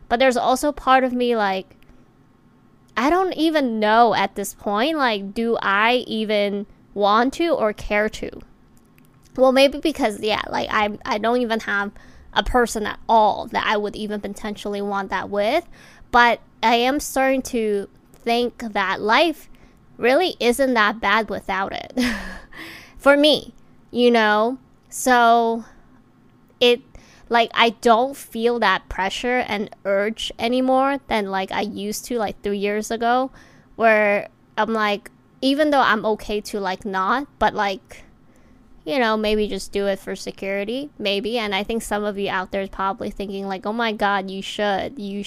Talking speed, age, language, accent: 160 wpm, 20-39, English, American